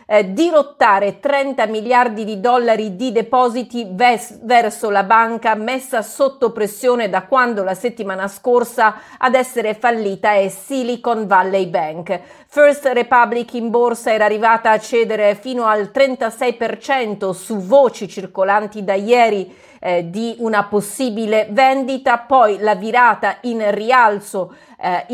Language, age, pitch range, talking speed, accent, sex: Italian, 40-59, 205-245 Hz, 125 wpm, native, female